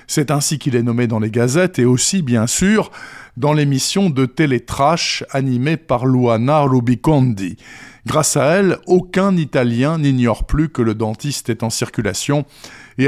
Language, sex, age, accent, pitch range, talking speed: French, male, 50-69, French, 120-155 Hz, 155 wpm